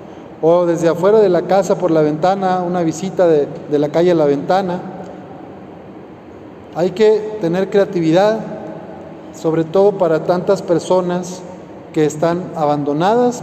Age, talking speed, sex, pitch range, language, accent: 40-59, 135 wpm, male, 155-195 Hz, Spanish, Mexican